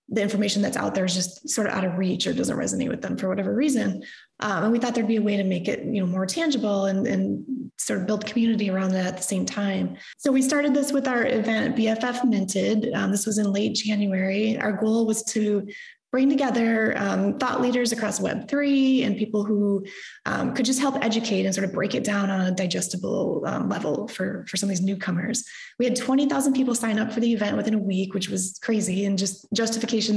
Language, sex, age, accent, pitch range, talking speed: English, female, 20-39, American, 195-235 Hz, 230 wpm